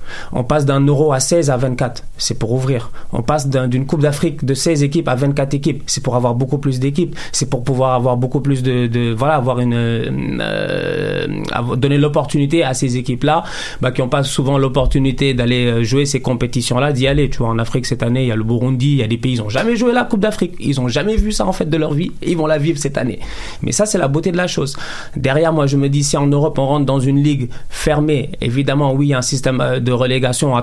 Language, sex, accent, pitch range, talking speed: French, male, French, 125-150 Hz, 260 wpm